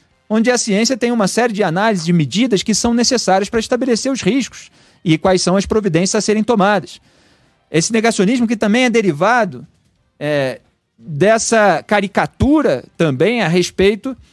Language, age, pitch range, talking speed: Portuguese, 40-59, 180-230 Hz, 150 wpm